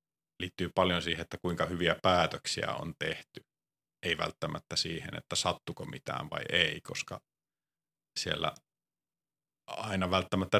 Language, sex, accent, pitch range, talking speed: Finnish, male, native, 85-105 Hz, 120 wpm